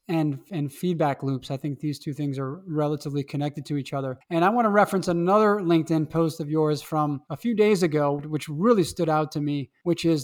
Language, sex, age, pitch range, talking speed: English, male, 20-39, 155-185 Hz, 225 wpm